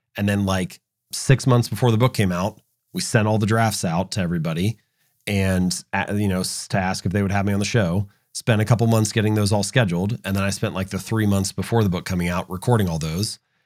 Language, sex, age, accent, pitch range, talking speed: English, male, 30-49, American, 95-115 Hz, 240 wpm